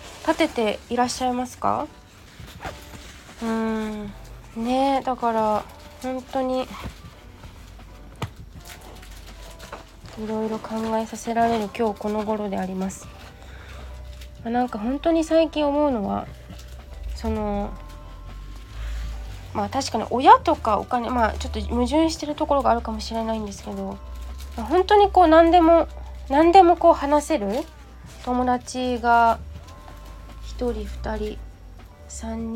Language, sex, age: Japanese, female, 20-39